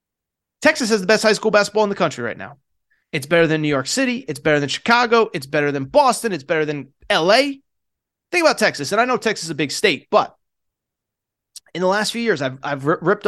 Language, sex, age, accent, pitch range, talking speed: English, male, 30-49, American, 155-220 Hz, 225 wpm